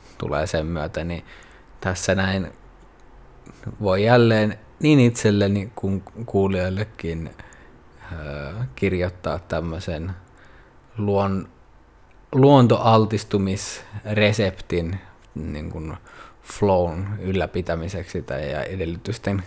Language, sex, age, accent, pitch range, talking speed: Finnish, male, 20-39, native, 90-110 Hz, 65 wpm